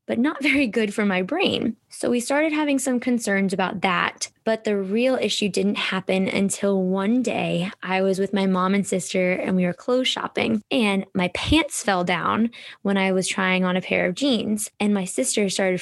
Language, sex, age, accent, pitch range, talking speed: English, female, 20-39, American, 195-235 Hz, 205 wpm